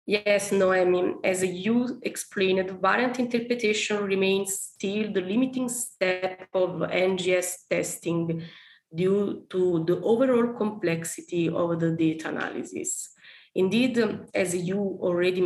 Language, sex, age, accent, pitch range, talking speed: English, female, 20-39, Italian, 175-220 Hz, 110 wpm